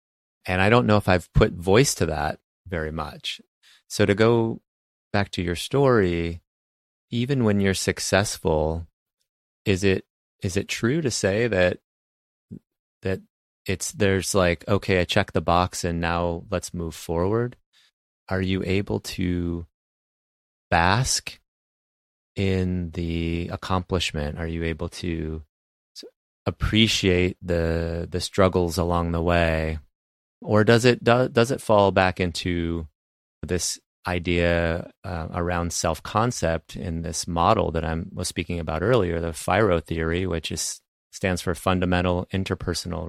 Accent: American